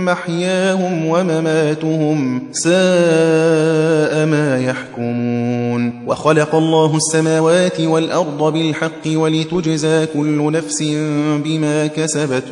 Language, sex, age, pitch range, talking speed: Persian, male, 30-49, 145-180 Hz, 75 wpm